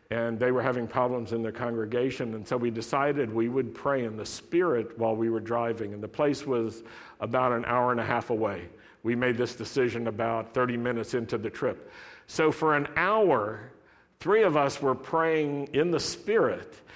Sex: male